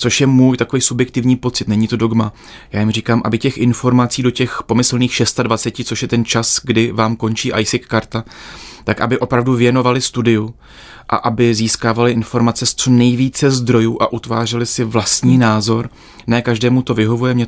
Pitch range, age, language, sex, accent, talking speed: 115-125 Hz, 30-49, Czech, male, native, 175 wpm